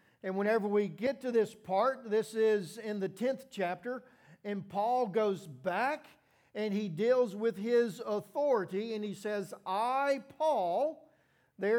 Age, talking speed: 50-69, 150 wpm